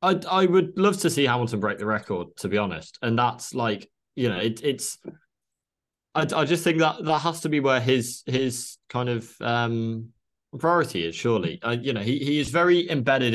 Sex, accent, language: male, British, English